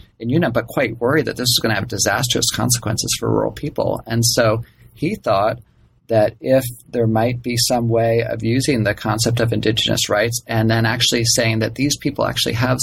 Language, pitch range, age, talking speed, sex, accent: English, 110-125 Hz, 30-49, 200 wpm, male, American